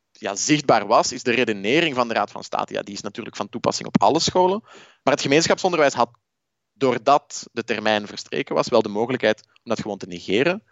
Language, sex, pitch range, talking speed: Dutch, male, 110-160 Hz, 205 wpm